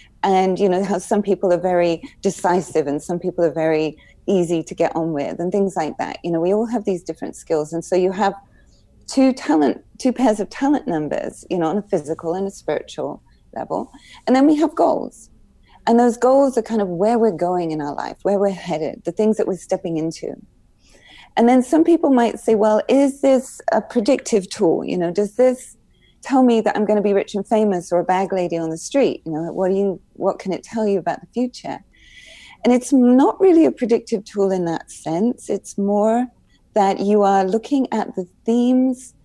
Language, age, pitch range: English, 30-49, 175-225 Hz